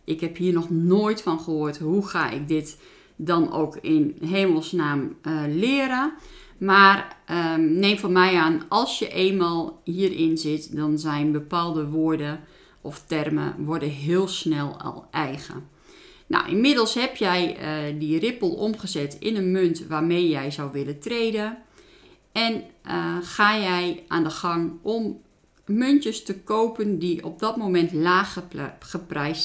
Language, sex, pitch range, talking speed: Dutch, female, 155-200 Hz, 145 wpm